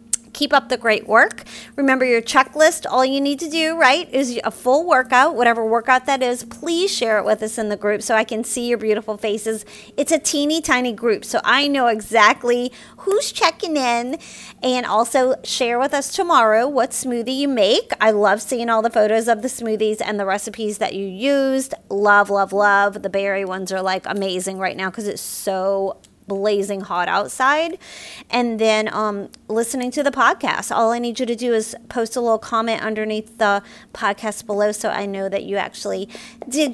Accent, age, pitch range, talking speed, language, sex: American, 30-49, 210-260 Hz, 195 wpm, English, female